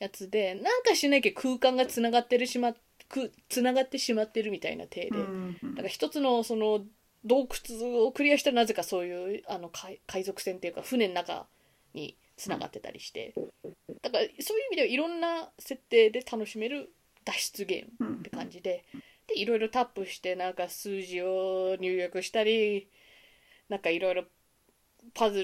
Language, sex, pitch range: Japanese, female, 195-280 Hz